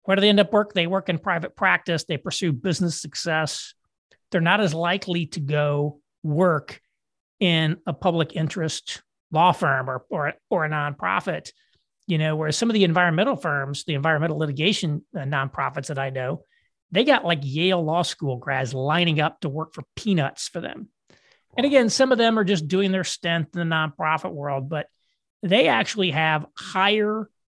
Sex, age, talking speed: male, 40-59, 180 wpm